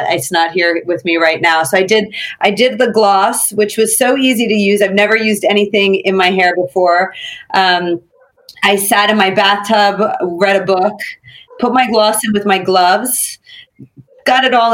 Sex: female